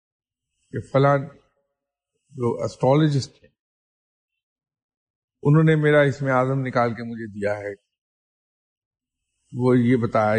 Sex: male